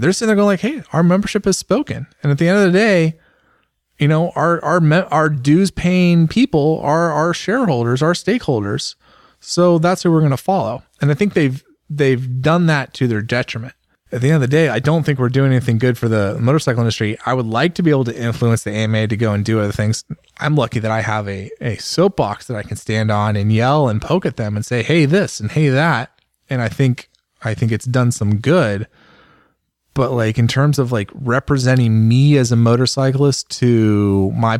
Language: English